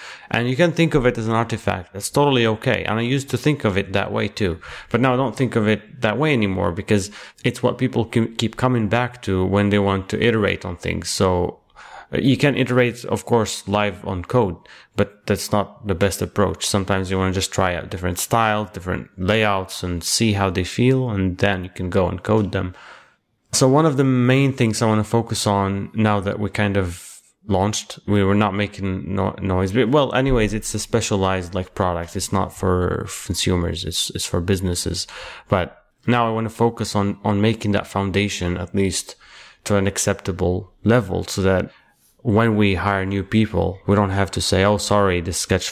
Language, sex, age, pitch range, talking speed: English, male, 30-49, 95-115 Hz, 205 wpm